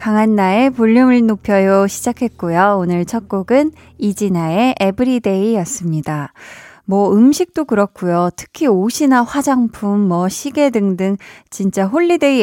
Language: Korean